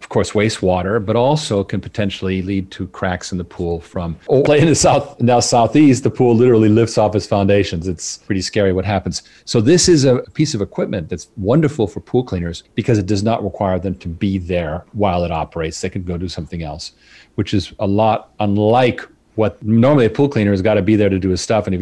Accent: American